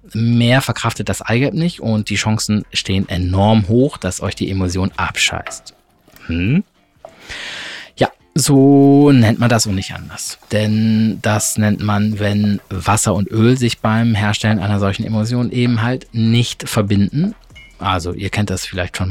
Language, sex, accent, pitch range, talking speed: German, male, German, 100-125 Hz, 155 wpm